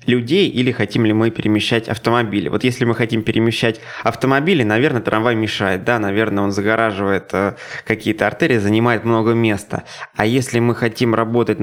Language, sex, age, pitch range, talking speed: Russian, male, 20-39, 110-130 Hz, 155 wpm